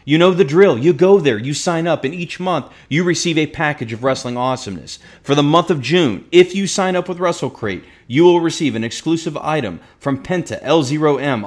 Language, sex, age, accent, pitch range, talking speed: English, male, 40-59, American, 120-160 Hz, 210 wpm